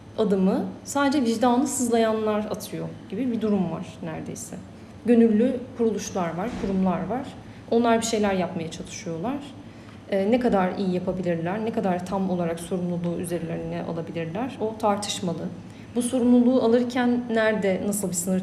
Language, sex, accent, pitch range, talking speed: Turkish, female, native, 175-225 Hz, 135 wpm